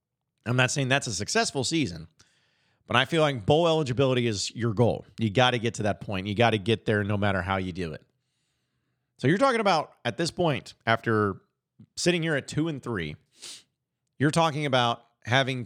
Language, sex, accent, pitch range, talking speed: English, male, American, 115-145 Hz, 200 wpm